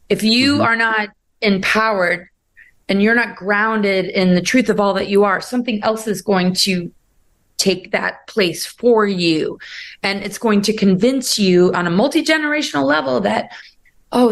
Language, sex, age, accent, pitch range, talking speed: English, female, 30-49, American, 190-225 Hz, 165 wpm